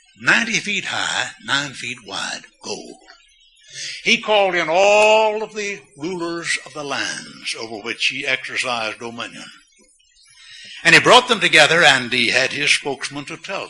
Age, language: 60-79, English